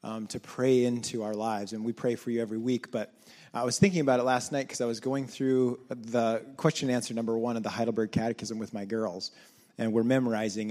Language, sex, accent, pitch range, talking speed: English, male, American, 110-130 Hz, 235 wpm